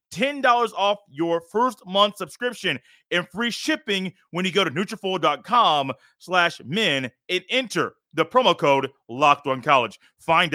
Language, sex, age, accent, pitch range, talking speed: English, male, 30-49, American, 160-215 Hz, 150 wpm